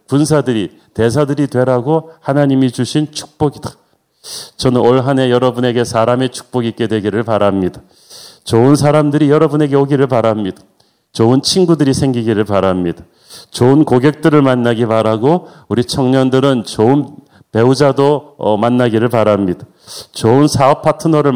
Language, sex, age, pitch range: Korean, male, 40-59, 120-145 Hz